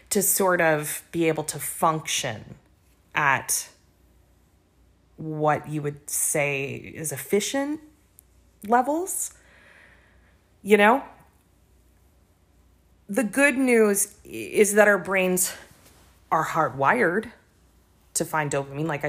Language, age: English, 30-49